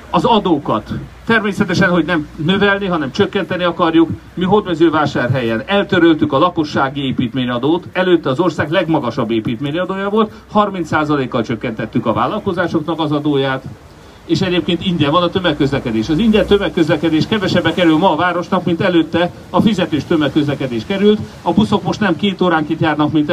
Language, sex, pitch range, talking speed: Hungarian, male, 130-170 Hz, 140 wpm